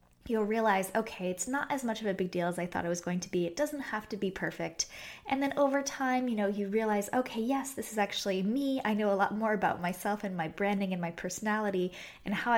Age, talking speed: 10-29, 260 wpm